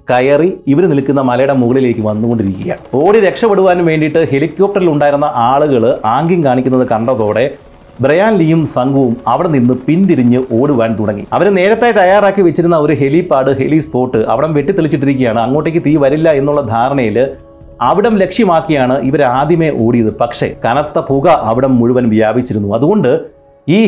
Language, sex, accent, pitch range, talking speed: Malayalam, male, native, 125-165 Hz, 125 wpm